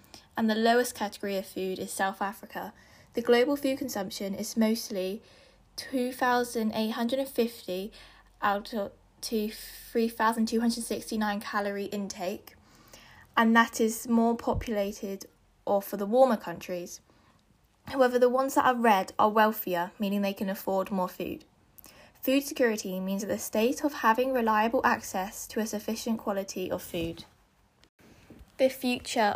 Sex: female